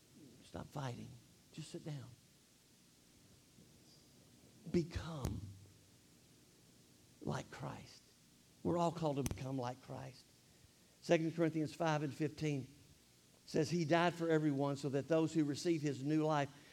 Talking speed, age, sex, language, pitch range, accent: 120 wpm, 50-69, male, English, 115-155 Hz, American